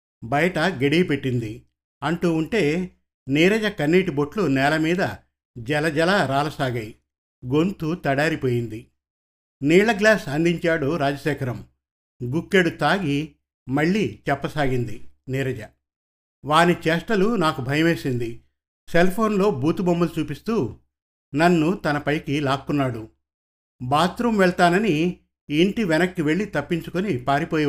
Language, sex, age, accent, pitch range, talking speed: Telugu, male, 50-69, native, 125-170 Hz, 80 wpm